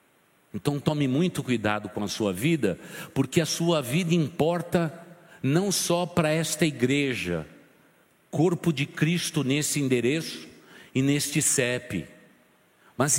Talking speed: 125 wpm